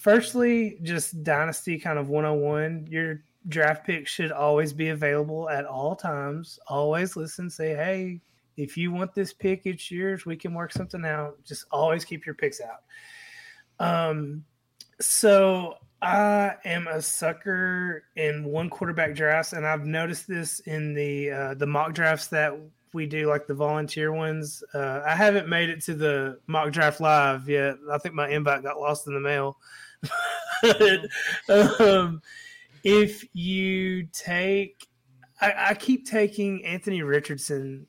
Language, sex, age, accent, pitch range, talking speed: English, male, 20-39, American, 150-195 Hz, 150 wpm